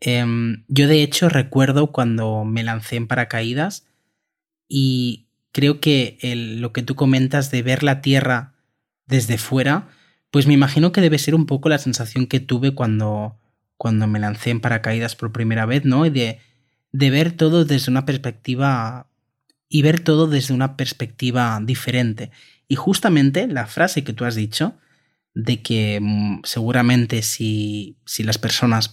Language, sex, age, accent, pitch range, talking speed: Spanish, male, 30-49, Spanish, 115-140 Hz, 160 wpm